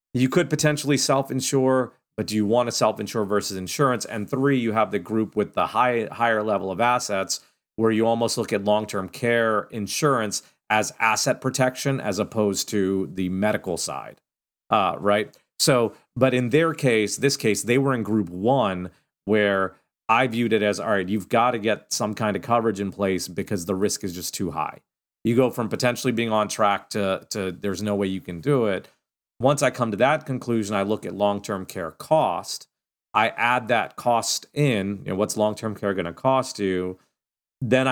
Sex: male